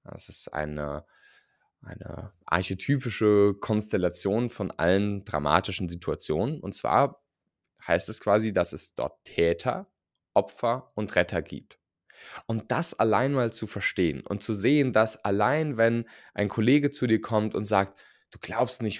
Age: 20-39